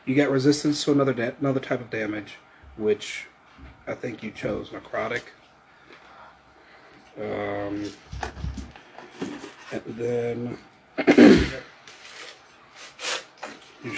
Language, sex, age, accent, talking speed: English, male, 40-59, American, 85 wpm